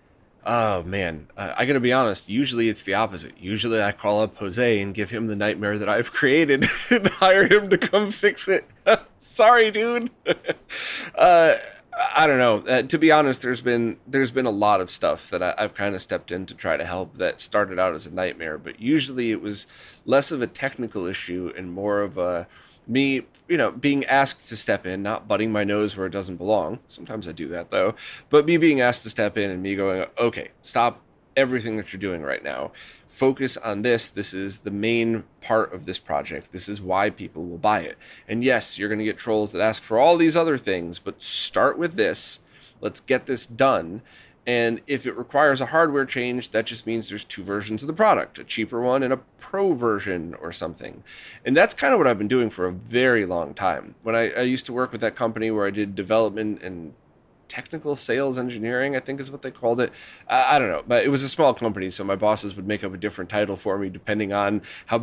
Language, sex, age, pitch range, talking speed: English, male, 30-49, 100-135 Hz, 225 wpm